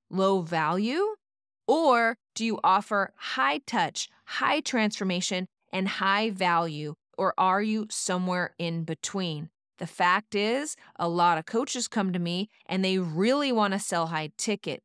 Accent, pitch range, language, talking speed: American, 180-220 Hz, English, 150 wpm